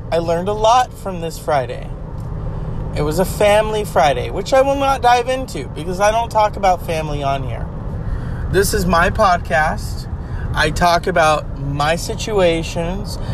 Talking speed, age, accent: 160 wpm, 30-49, American